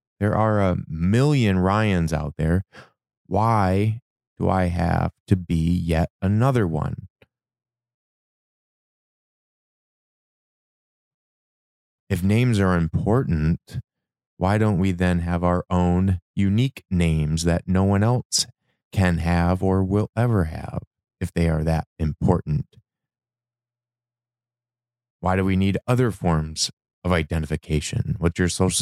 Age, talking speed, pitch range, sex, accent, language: 30-49, 115 wpm, 85-120 Hz, male, American, English